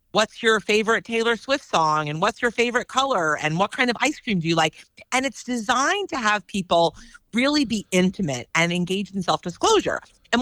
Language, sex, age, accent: English, female, 40-59, American